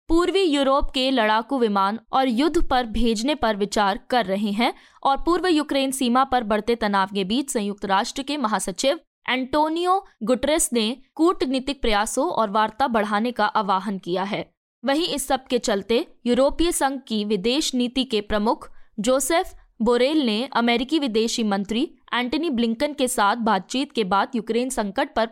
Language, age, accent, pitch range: Hindi, 20-39, native, 215-280 Hz